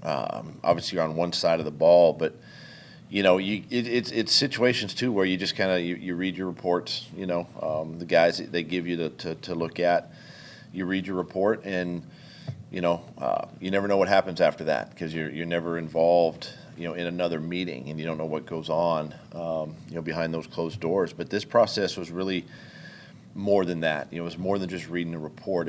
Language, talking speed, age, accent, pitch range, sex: English, 230 wpm, 40-59, American, 85-95 Hz, male